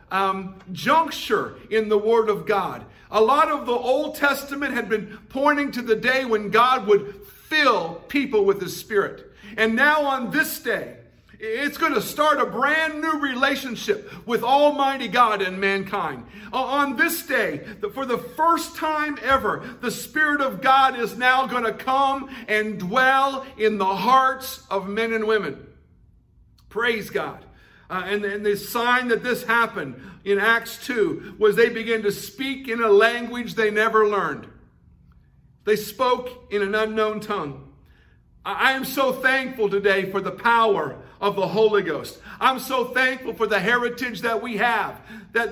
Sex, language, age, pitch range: male, English, 50-69, 210-270 Hz